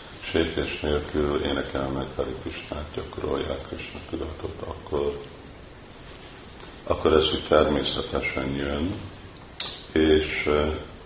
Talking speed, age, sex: 85 wpm, 50-69, male